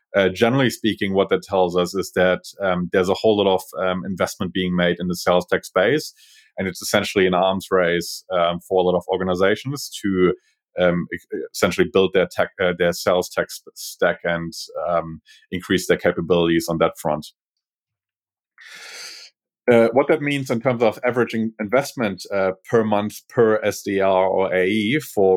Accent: German